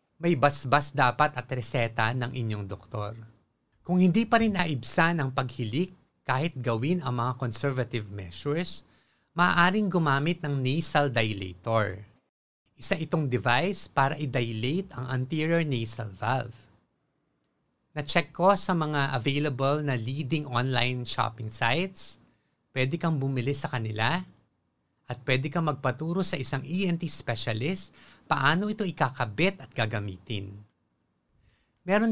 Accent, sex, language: native, male, Filipino